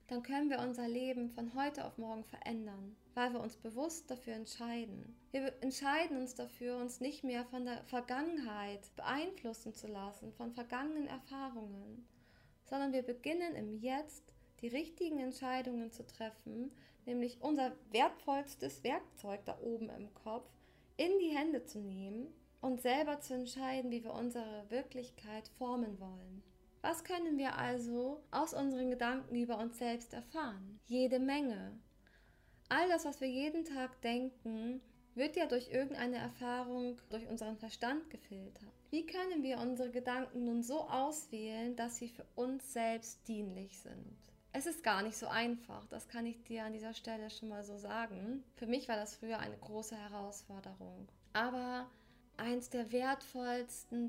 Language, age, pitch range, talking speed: German, 20-39, 225-260 Hz, 155 wpm